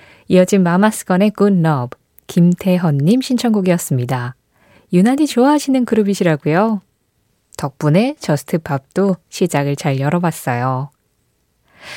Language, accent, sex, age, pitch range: Korean, native, female, 20-39, 155-230 Hz